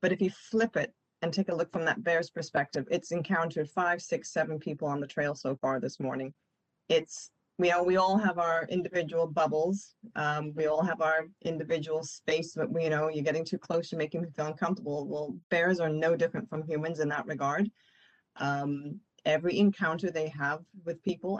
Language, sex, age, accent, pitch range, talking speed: English, female, 30-49, American, 150-175 Hz, 200 wpm